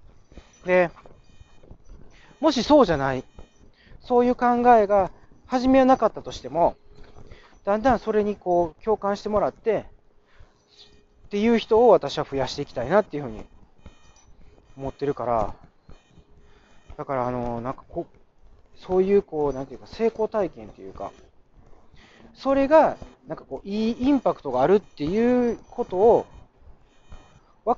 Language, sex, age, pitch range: Japanese, male, 40-59, 145-235 Hz